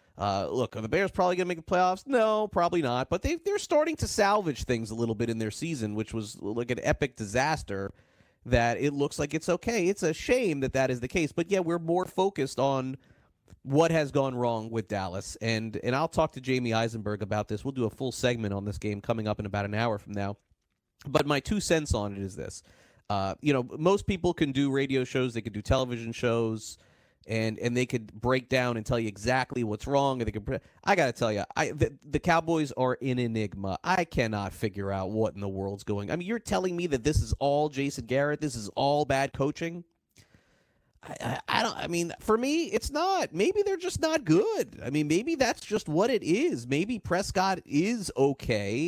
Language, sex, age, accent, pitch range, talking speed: English, male, 30-49, American, 110-165 Hz, 225 wpm